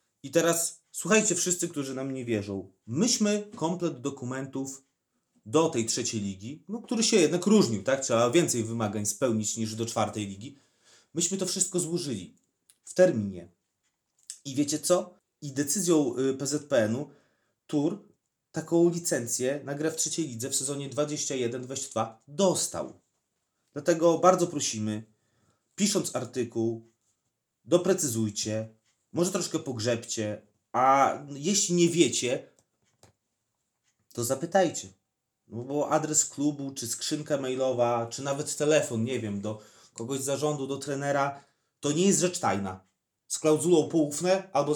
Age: 30-49